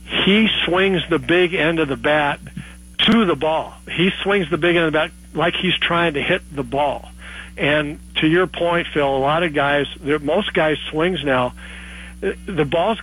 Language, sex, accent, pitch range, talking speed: English, male, American, 135-170 Hz, 190 wpm